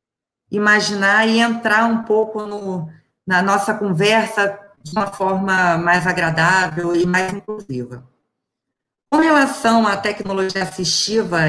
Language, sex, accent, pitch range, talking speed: Portuguese, female, Brazilian, 170-215 Hz, 115 wpm